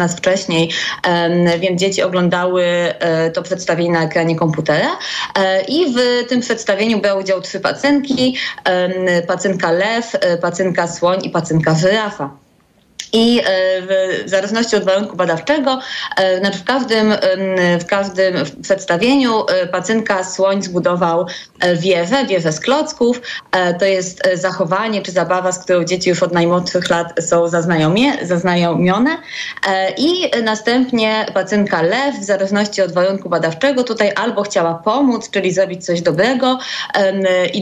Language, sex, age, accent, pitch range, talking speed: Polish, female, 20-39, native, 175-220 Hz, 120 wpm